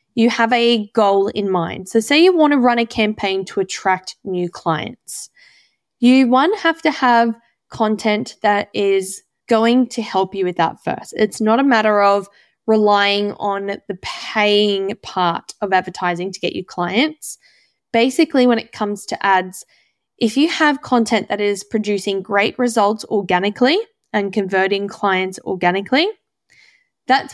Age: 10-29